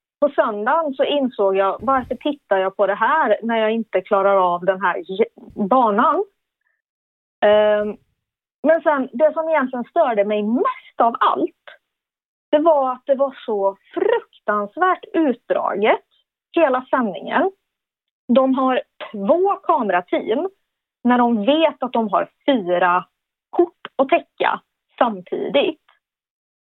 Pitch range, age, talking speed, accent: 215-320 Hz, 30-49, 120 wpm, native